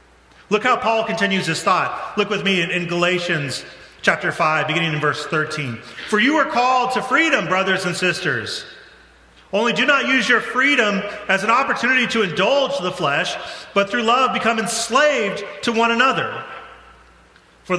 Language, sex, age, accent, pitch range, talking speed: English, male, 40-59, American, 130-190 Hz, 165 wpm